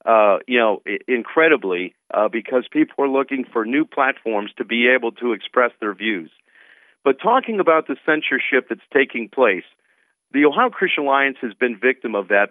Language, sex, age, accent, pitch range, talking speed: English, male, 50-69, American, 115-140 Hz, 175 wpm